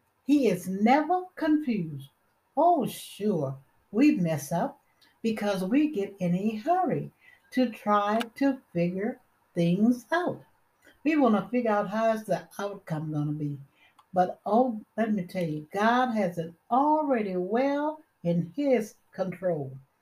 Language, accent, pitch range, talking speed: English, American, 175-245 Hz, 140 wpm